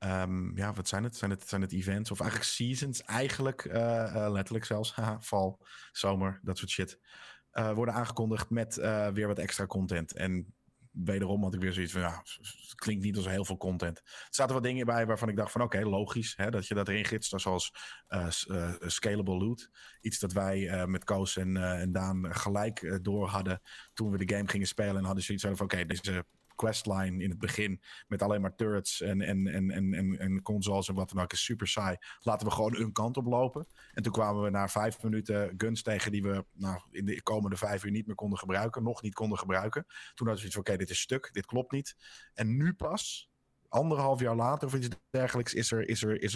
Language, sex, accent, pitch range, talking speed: Dutch, male, Dutch, 95-110 Hz, 235 wpm